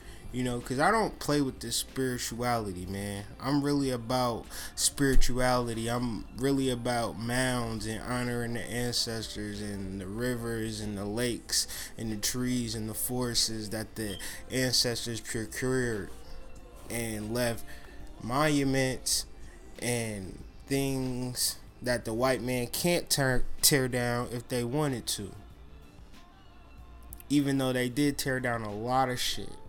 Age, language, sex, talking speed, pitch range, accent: 20-39, English, male, 130 wpm, 105-130 Hz, American